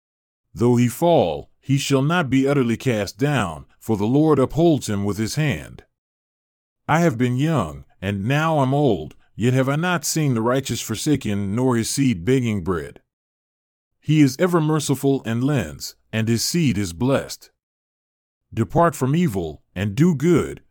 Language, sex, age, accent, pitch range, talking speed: English, male, 40-59, American, 110-145 Hz, 165 wpm